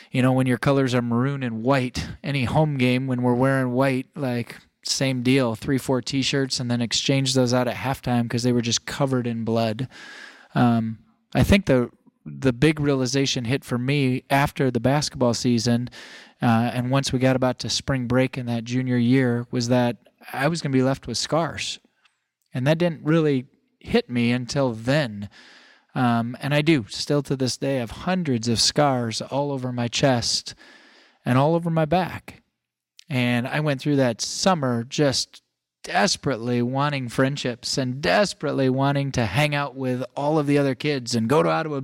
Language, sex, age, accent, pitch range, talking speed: English, male, 20-39, American, 120-145 Hz, 185 wpm